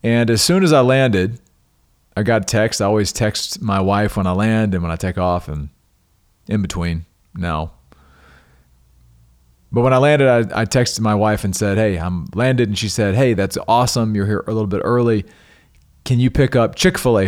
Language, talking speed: English, 200 wpm